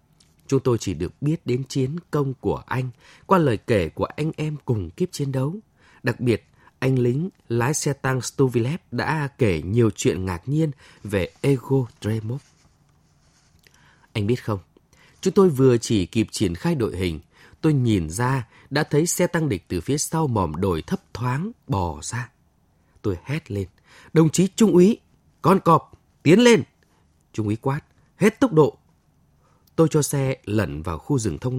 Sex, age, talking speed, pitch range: male, 20-39, 175 wpm, 110-155 Hz